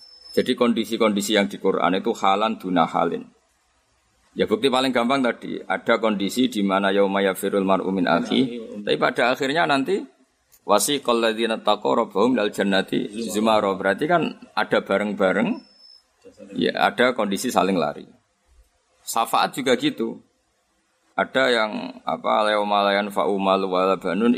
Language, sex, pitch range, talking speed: Indonesian, male, 100-125 Hz, 120 wpm